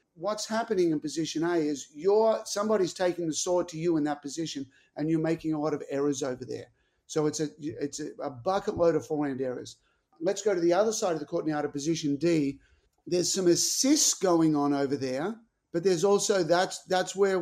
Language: English